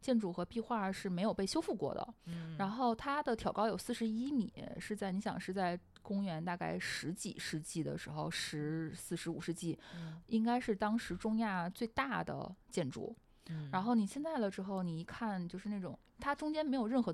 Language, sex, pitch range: Chinese, female, 180-235 Hz